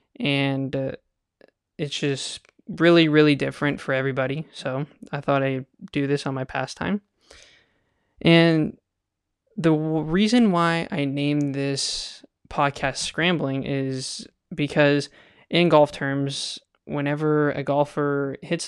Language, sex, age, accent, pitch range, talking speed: English, male, 20-39, American, 135-155 Hz, 115 wpm